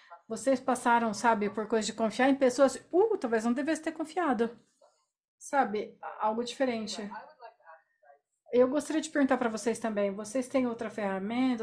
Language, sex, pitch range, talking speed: Portuguese, female, 205-260 Hz, 150 wpm